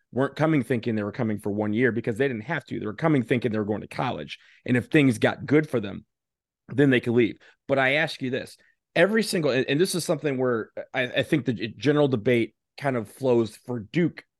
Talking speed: 240 wpm